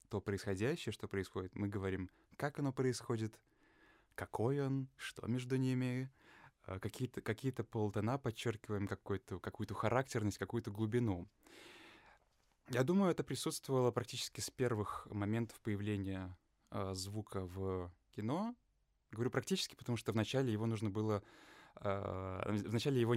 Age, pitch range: 20-39, 100-125 Hz